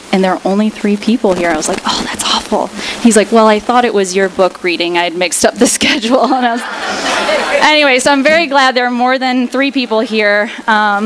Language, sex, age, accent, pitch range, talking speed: English, female, 10-29, American, 200-265 Hz, 215 wpm